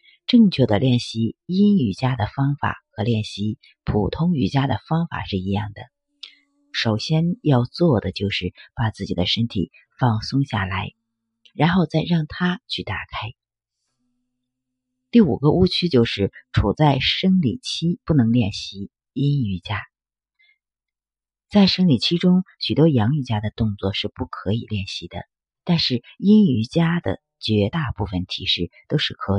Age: 50-69